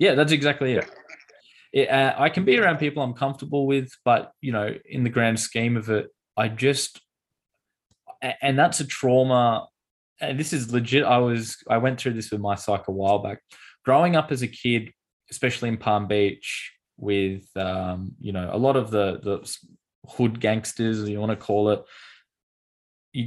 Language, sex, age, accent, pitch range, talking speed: English, male, 10-29, Australian, 100-130 Hz, 185 wpm